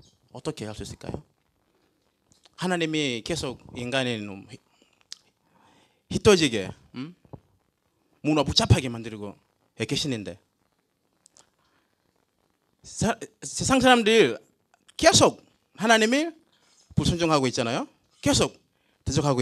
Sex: male